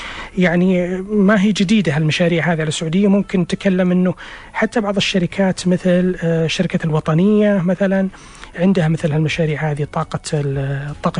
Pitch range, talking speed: 155-185 Hz, 125 wpm